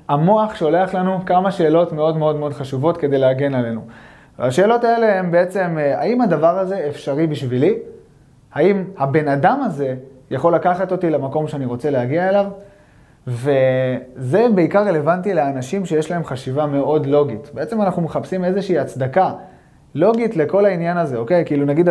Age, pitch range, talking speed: 20-39, 145-190 Hz, 150 wpm